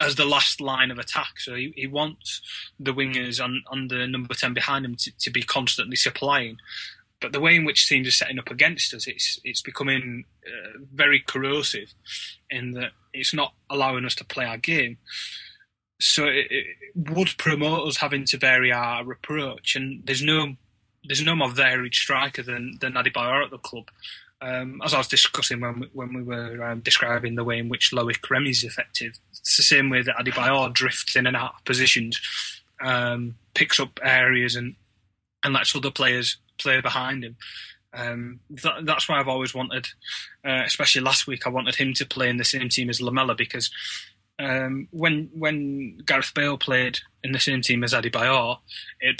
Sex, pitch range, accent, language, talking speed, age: male, 120-135 Hz, British, English, 190 wpm, 20-39